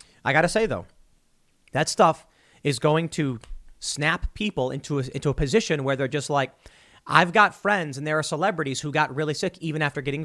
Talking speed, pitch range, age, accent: 200 wpm, 140-190 Hz, 30-49, American